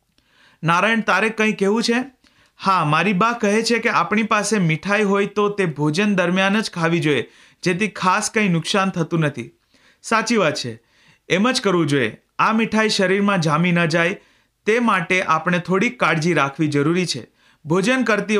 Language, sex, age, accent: Gujarati, male, 40-59, native